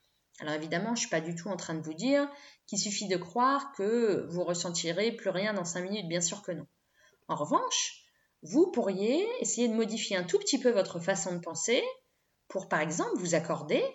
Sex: female